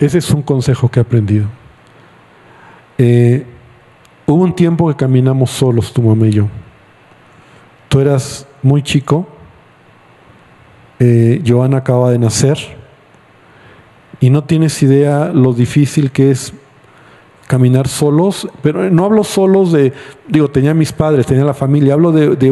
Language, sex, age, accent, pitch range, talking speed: Spanish, male, 50-69, Mexican, 120-150 Hz, 145 wpm